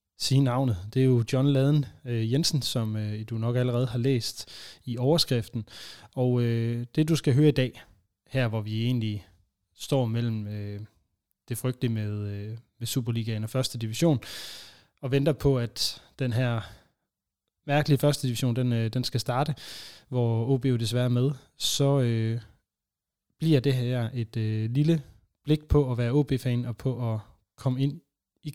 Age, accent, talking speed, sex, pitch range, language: 20-39, native, 170 wpm, male, 110-135 Hz, Danish